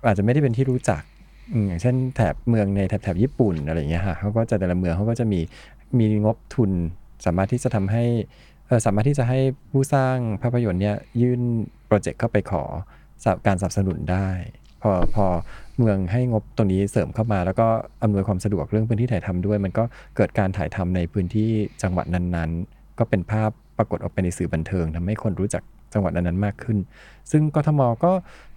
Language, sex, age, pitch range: Thai, male, 20-39, 90-120 Hz